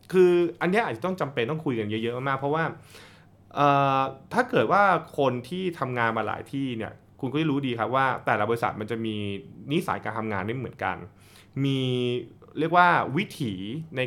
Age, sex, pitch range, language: 20-39, male, 110-155 Hz, Thai